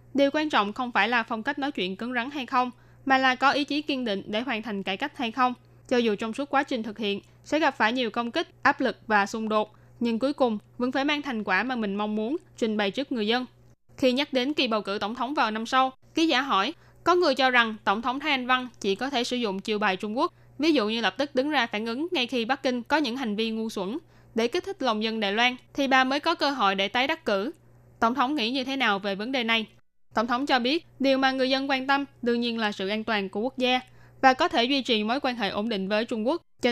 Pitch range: 215-270 Hz